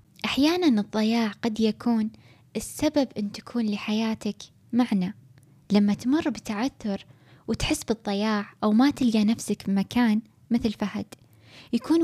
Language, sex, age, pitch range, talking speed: Arabic, female, 10-29, 205-240 Hz, 110 wpm